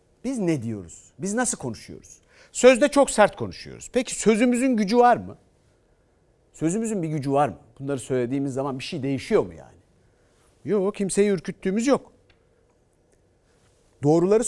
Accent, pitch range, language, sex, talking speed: native, 135-215 Hz, Turkish, male, 135 wpm